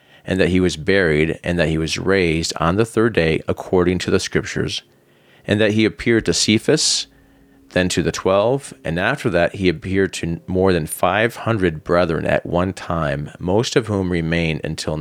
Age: 40-59